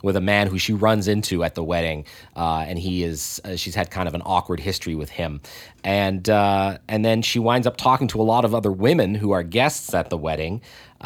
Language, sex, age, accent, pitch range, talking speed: English, male, 30-49, American, 90-110 Hz, 240 wpm